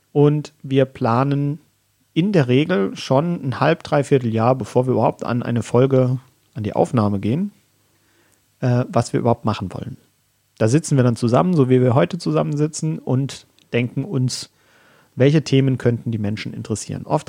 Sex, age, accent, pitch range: male, 40-59, German, 120-150 Hz